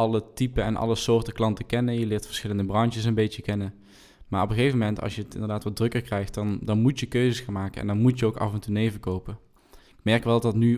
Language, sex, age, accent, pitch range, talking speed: Dutch, male, 20-39, Dutch, 100-115 Hz, 260 wpm